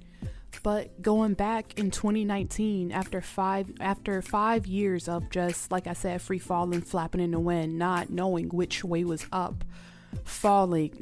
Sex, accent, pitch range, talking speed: female, American, 170-205 Hz, 150 wpm